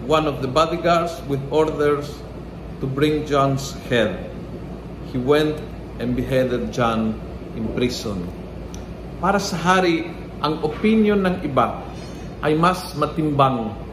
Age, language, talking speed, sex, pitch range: 50-69, Filipino, 115 wpm, male, 145-200 Hz